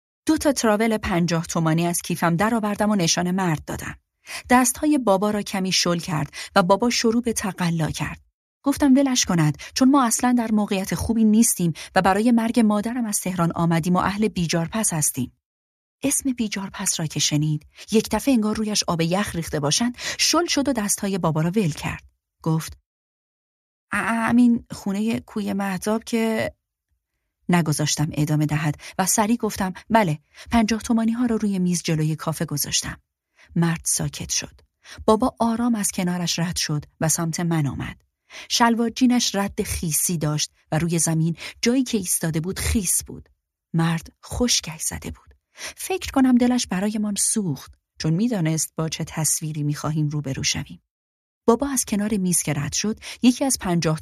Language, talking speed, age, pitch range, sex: Persian, 160 wpm, 30-49, 155-225 Hz, female